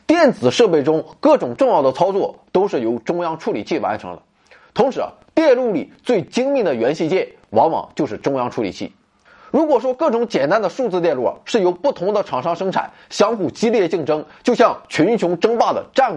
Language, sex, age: Chinese, male, 30-49